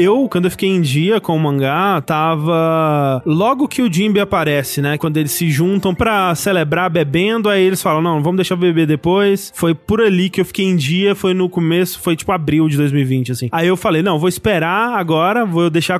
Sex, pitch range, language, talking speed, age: male, 160-195 Hz, Portuguese, 215 wpm, 20-39